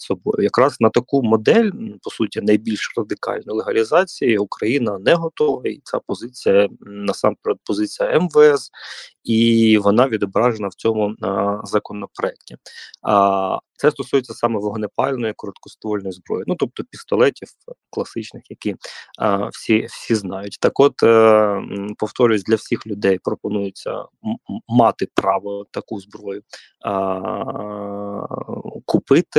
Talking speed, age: 110 wpm, 20-39